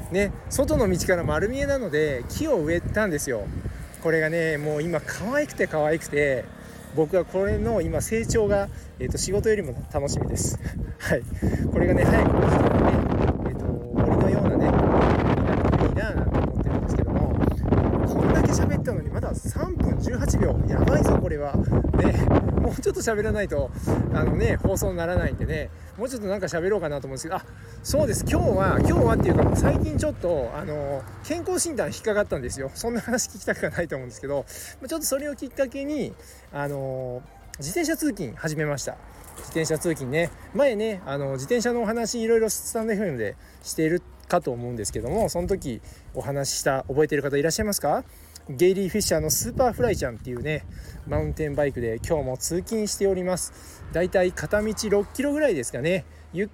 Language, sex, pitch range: Japanese, male, 140-215 Hz